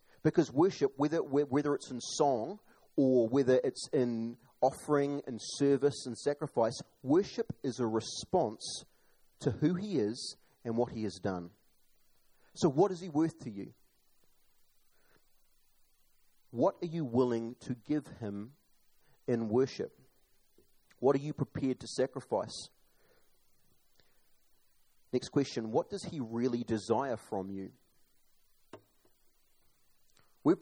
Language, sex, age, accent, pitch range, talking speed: English, male, 30-49, Australian, 115-145 Hz, 120 wpm